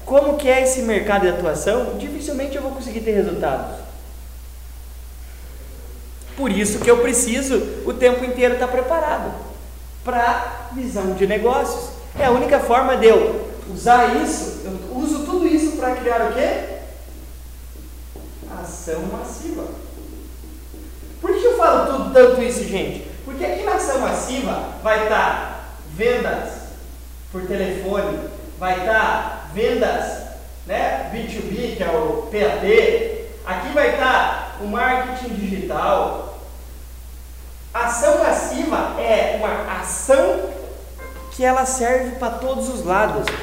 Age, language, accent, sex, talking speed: 20-39, Portuguese, Brazilian, male, 125 wpm